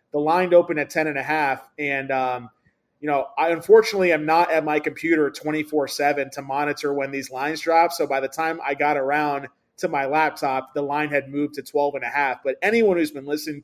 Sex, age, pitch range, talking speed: male, 20-39, 145-170 Hz, 225 wpm